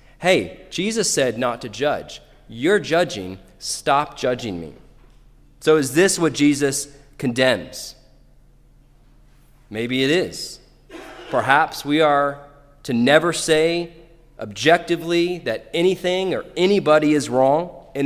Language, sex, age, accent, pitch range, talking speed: English, male, 30-49, American, 115-160 Hz, 115 wpm